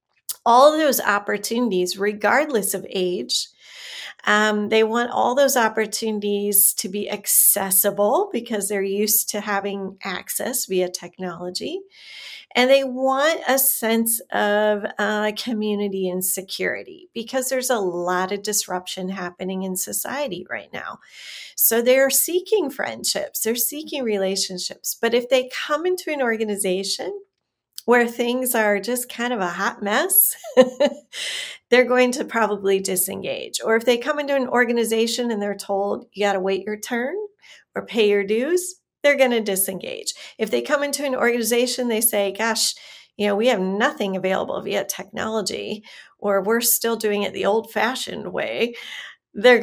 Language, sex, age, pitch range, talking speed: English, female, 40-59, 200-255 Hz, 150 wpm